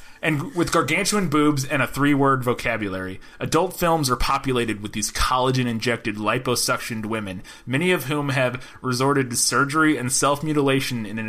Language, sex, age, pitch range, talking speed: English, male, 30-49, 125-175 Hz, 150 wpm